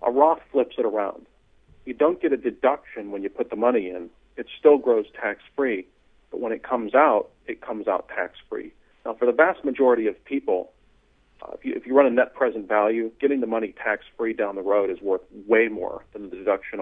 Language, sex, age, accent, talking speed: English, male, 40-59, American, 210 wpm